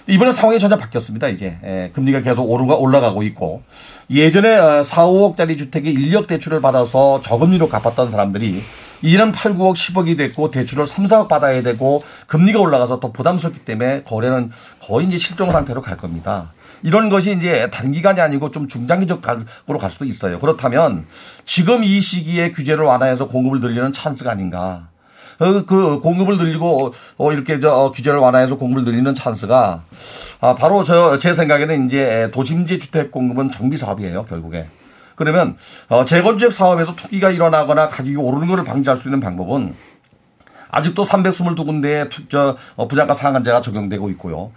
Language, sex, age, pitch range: Korean, male, 40-59, 120-165 Hz